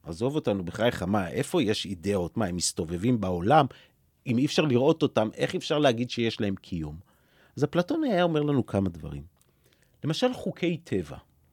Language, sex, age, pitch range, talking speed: English, male, 40-59, 100-155 Hz, 160 wpm